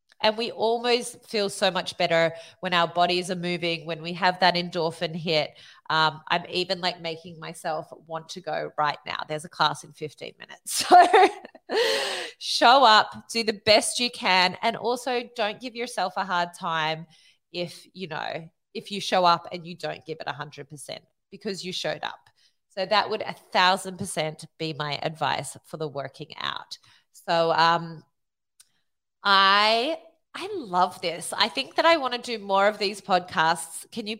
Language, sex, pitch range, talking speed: English, female, 165-220 Hz, 175 wpm